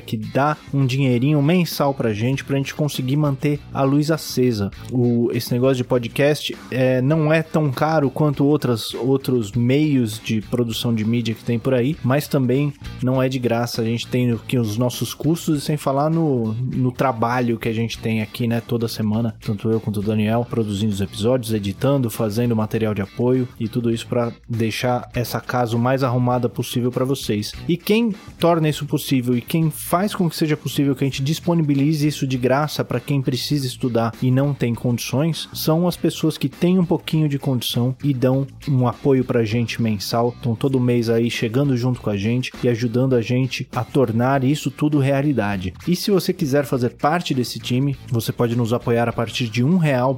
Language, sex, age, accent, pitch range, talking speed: Portuguese, male, 20-39, Brazilian, 120-145 Hz, 200 wpm